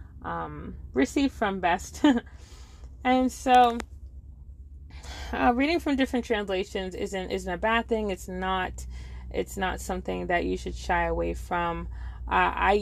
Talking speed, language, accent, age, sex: 135 wpm, English, American, 20-39, female